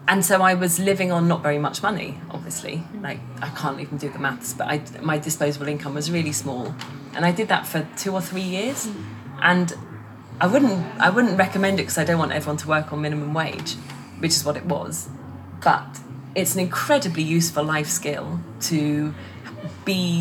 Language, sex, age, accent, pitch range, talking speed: English, female, 20-39, British, 140-170 Hz, 195 wpm